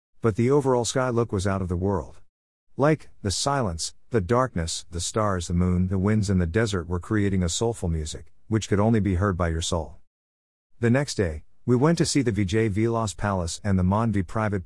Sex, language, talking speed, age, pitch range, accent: male, Marathi, 215 wpm, 50-69, 90-115 Hz, American